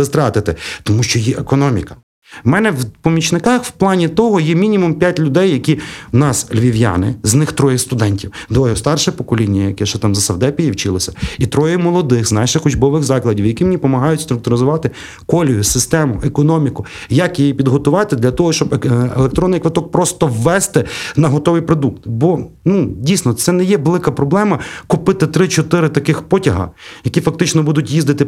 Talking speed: 165 wpm